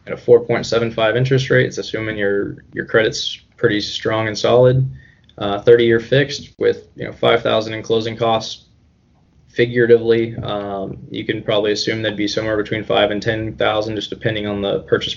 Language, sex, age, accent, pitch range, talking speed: English, male, 20-39, American, 105-120 Hz, 165 wpm